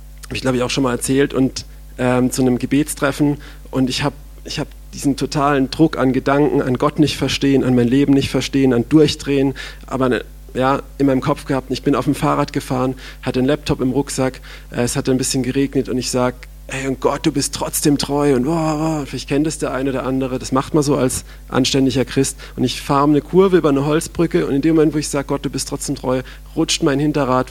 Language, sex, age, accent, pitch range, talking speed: German, male, 40-59, German, 130-150 Hz, 230 wpm